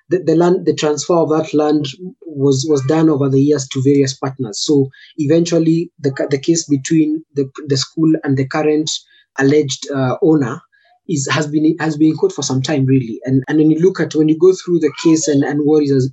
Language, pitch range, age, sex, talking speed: English, 140-160 Hz, 20-39, male, 215 wpm